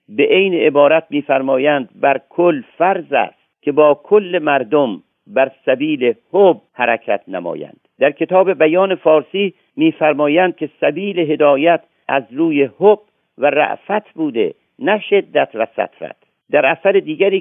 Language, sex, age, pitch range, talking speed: Persian, male, 50-69, 135-185 Hz, 130 wpm